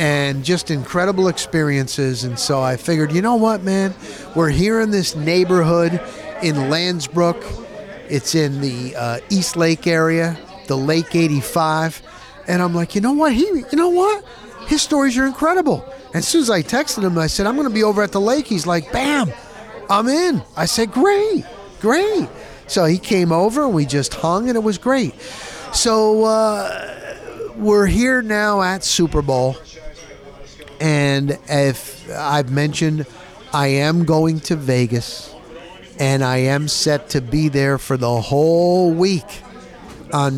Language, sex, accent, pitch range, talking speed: English, male, American, 145-195 Hz, 160 wpm